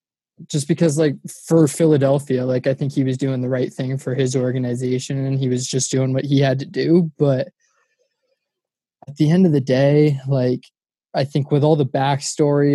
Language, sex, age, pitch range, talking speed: English, male, 20-39, 130-145 Hz, 195 wpm